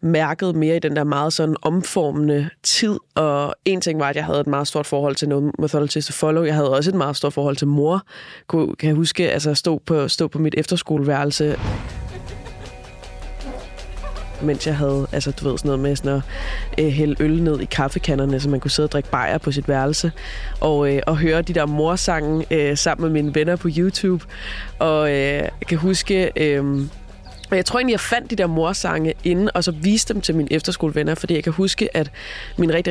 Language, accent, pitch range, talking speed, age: Danish, native, 145-170 Hz, 210 wpm, 20-39